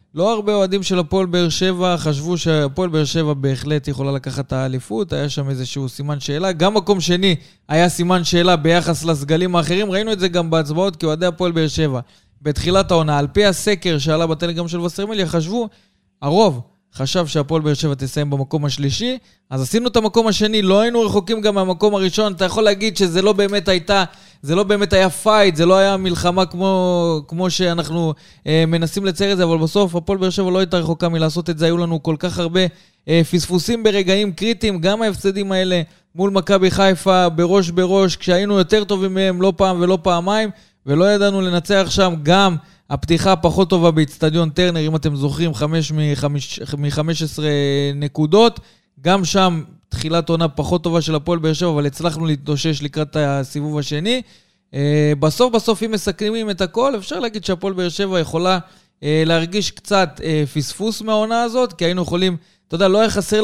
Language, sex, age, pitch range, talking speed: Hebrew, male, 20-39, 155-195 Hz, 175 wpm